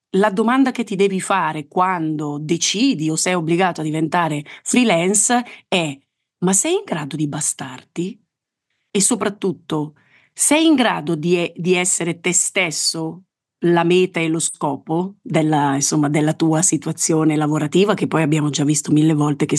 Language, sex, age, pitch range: Italian, female, 30-49, 155-195 Hz